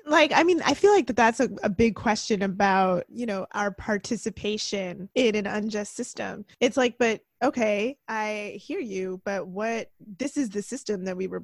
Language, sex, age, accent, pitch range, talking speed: English, female, 20-39, American, 195-240 Hz, 195 wpm